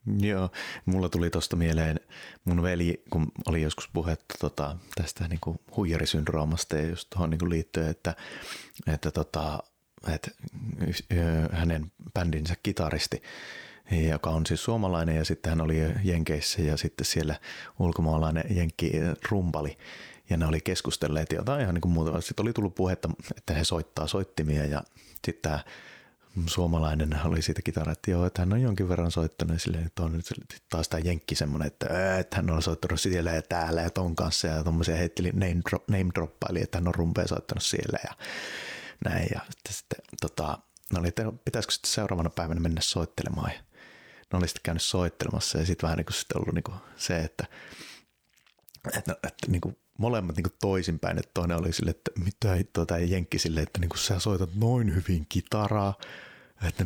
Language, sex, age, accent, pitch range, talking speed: Finnish, male, 30-49, native, 80-95 Hz, 160 wpm